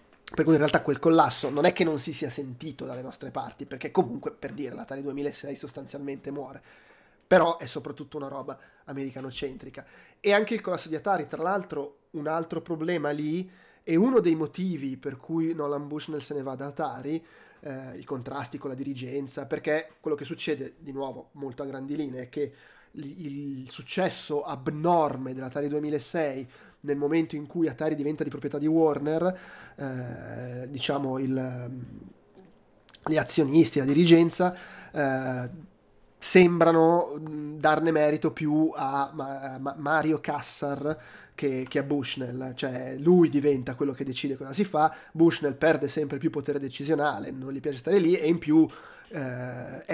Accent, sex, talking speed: native, male, 155 wpm